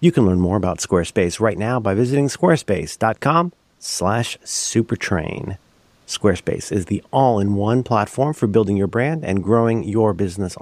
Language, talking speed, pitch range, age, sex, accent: English, 140 wpm, 95-130 Hz, 50-69, male, American